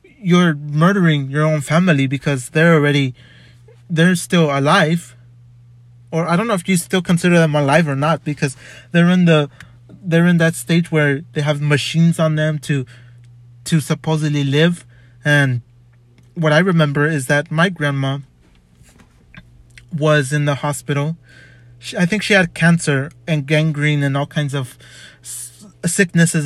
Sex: male